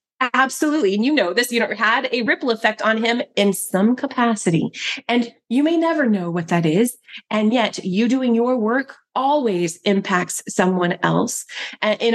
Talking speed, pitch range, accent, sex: 175 wpm, 185-250 Hz, American, female